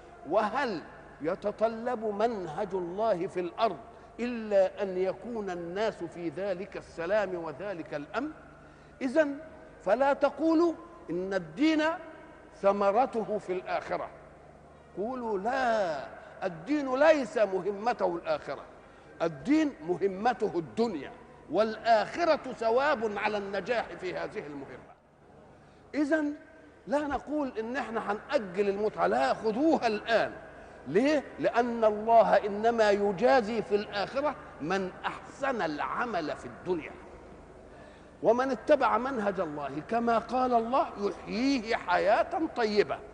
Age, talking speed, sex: 50-69, 95 wpm, male